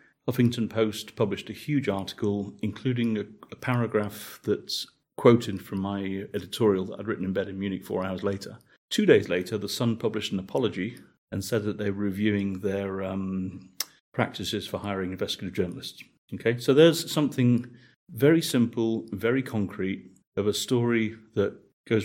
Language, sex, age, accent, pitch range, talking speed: Croatian, male, 40-59, British, 100-115 Hz, 160 wpm